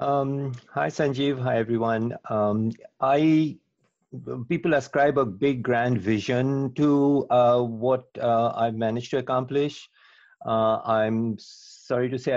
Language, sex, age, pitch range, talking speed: English, male, 50-69, 105-125 Hz, 130 wpm